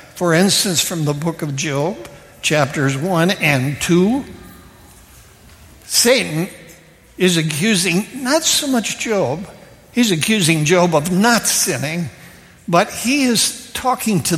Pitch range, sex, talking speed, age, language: 150-200 Hz, male, 120 wpm, 60-79, English